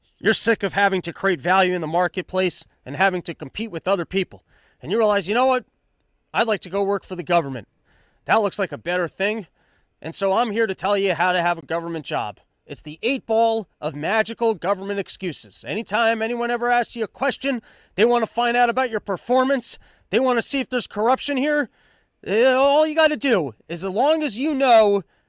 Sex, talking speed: male, 220 wpm